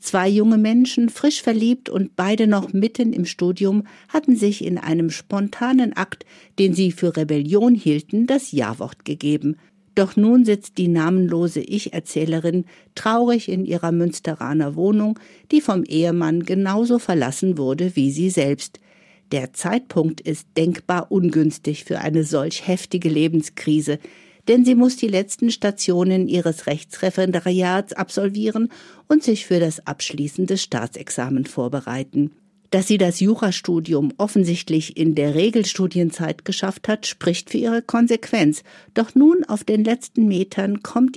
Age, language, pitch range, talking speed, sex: 60-79, German, 165-220 Hz, 135 wpm, female